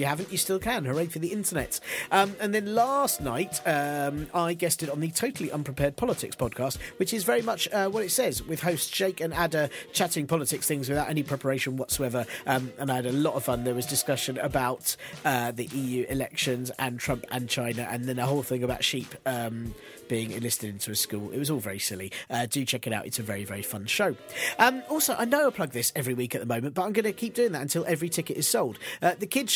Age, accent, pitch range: 40-59, British, 130-180 Hz